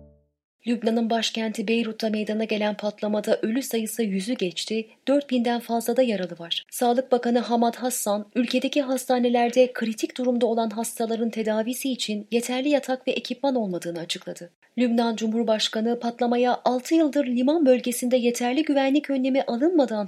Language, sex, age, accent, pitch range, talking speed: Turkish, female, 30-49, native, 210-255 Hz, 135 wpm